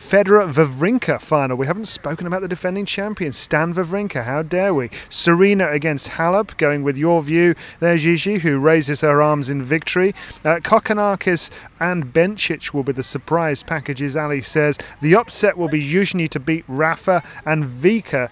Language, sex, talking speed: English, male, 165 wpm